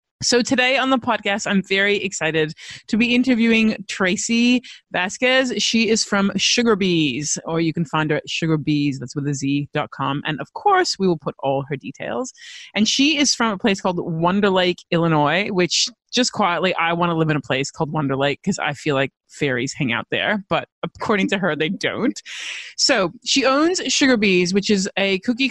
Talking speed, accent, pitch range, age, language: 190 wpm, American, 160-230 Hz, 30-49, English